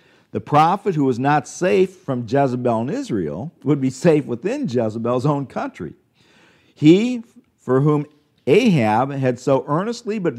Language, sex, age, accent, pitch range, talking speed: English, male, 50-69, American, 105-140 Hz, 145 wpm